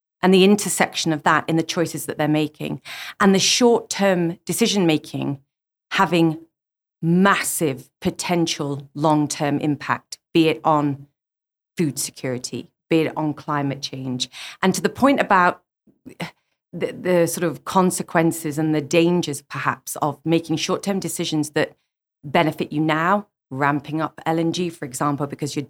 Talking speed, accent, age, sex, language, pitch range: 145 wpm, British, 40-59, female, English, 145-175 Hz